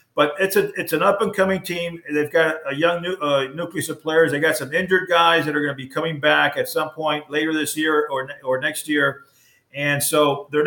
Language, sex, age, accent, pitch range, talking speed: English, male, 50-69, American, 140-170 Hz, 235 wpm